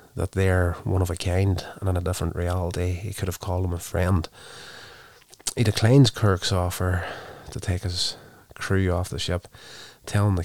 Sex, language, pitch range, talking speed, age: male, English, 90-100 Hz, 180 wpm, 20-39